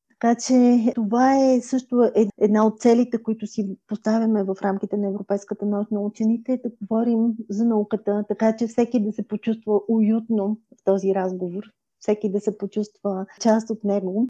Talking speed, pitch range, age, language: 170 wpm, 215-255 Hz, 30-49, Bulgarian